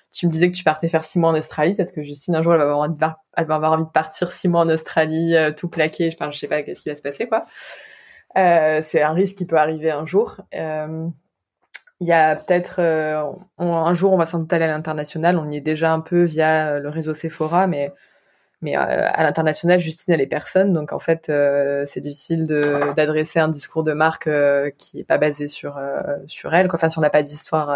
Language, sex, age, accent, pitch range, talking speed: French, female, 20-39, French, 150-170 Hz, 240 wpm